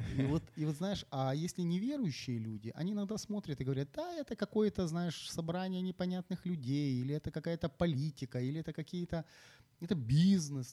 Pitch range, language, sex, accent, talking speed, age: 125-160 Hz, Ukrainian, male, native, 170 wpm, 30-49